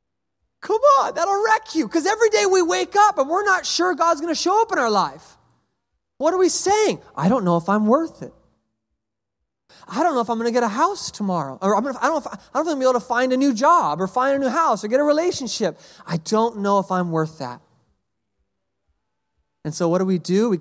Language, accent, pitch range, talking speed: English, American, 165-255 Hz, 245 wpm